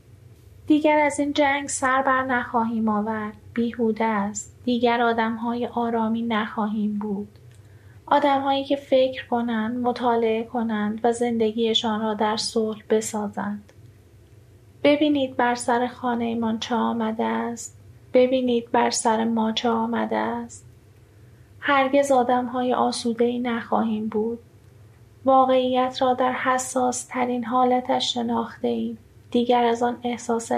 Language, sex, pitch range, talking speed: Persian, female, 205-245 Hz, 120 wpm